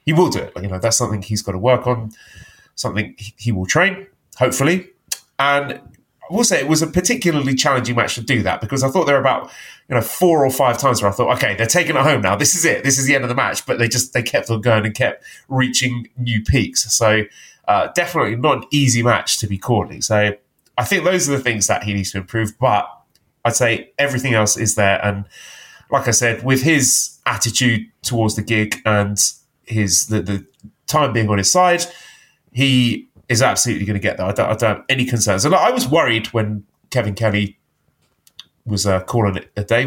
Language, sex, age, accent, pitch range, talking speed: English, male, 30-49, British, 105-135 Hz, 225 wpm